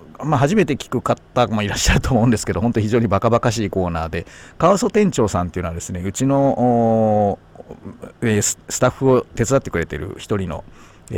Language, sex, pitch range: Japanese, male, 90-120 Hz